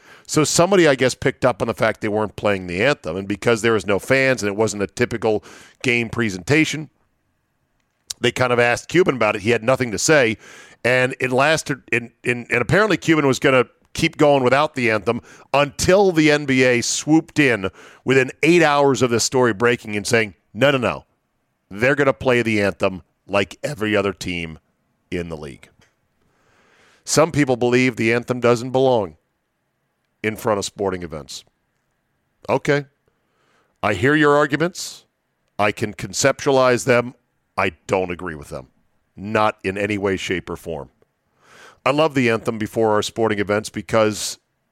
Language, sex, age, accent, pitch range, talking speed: English, male, 50-69, American, 105-130 Hz, 170 wpm